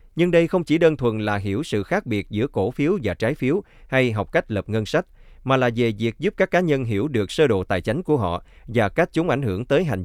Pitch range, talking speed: 100-145 Hz, 275 wpm